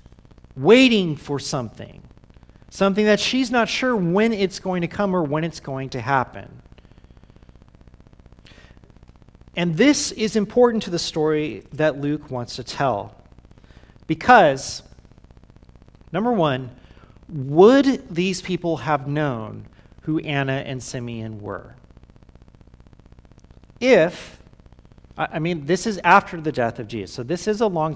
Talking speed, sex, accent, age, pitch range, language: 125 wpm, male, American, 40-59, 125-185 Hz, English